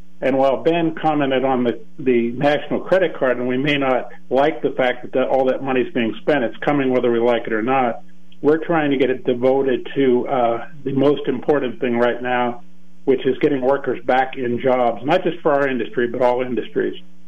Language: English